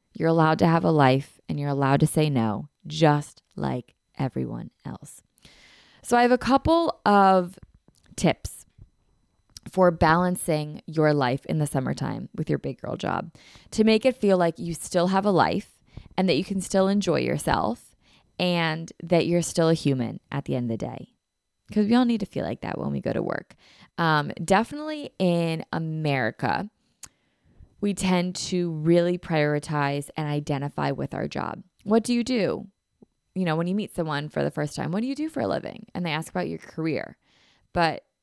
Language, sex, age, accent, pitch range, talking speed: English, female, 20-39, American, 145-185 Hz, 185 wpm